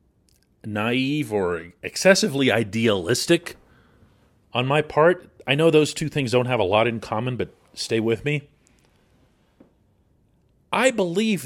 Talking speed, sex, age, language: 125 wpm, male, 40-59, English